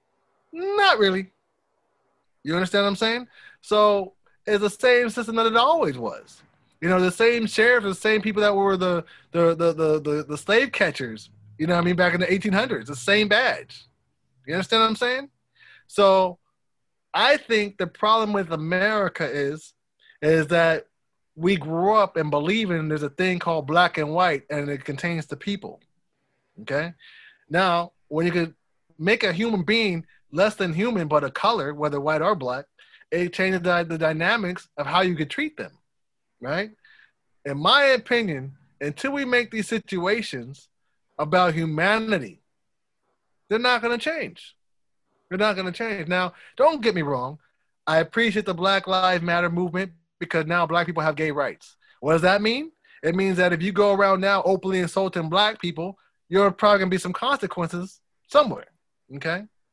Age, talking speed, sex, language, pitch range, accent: 20-39, 175 wpm, male, English, 165-215 Hz, American